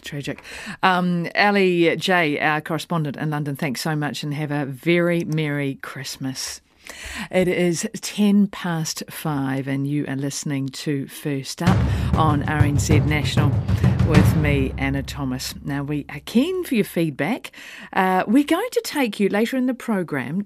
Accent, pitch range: Australian, 140-185 Hz